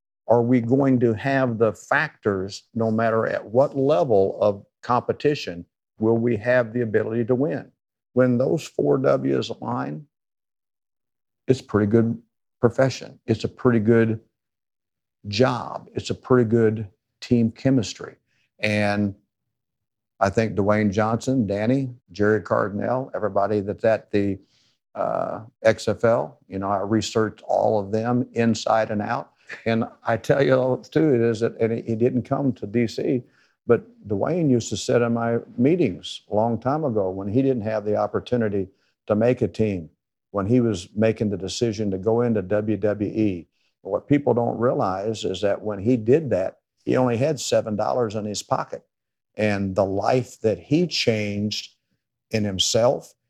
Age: 50-69